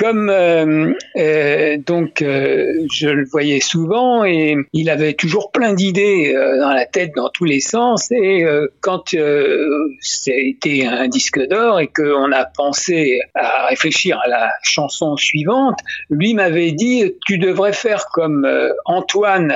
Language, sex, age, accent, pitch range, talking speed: French, male, 50-69, French, 150-205 Hz, 155 wpm